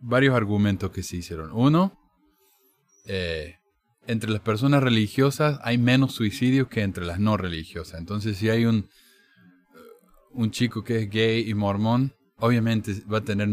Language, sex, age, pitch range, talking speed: Spanish, male, 20-39, 100-125 Hz, 150 wpm